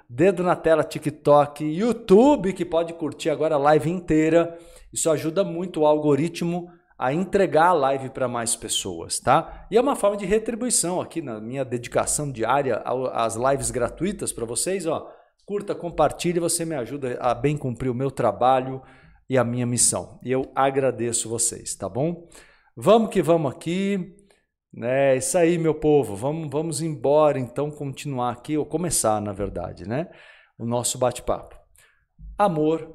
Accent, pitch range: Brazilian, 130-170 Hz